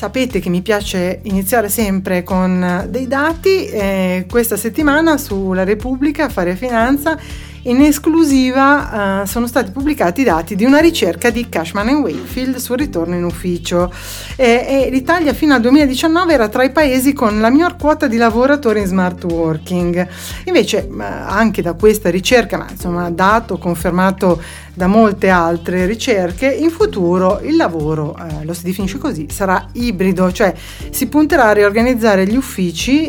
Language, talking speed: Italian, 155 wpm